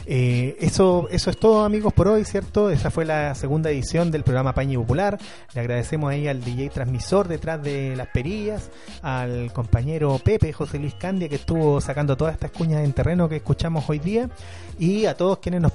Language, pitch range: Spanish, 125-160 Hz